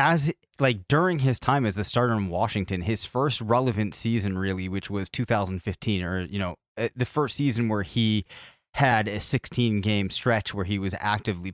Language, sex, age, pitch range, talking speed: English, male, 30-49, 100-125 Hz, 180 wpm